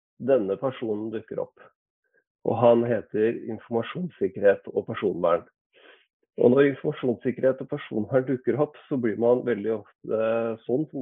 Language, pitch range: English, 105-135 Hz